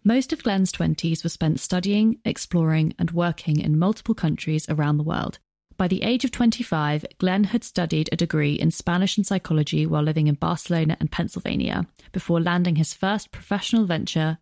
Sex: female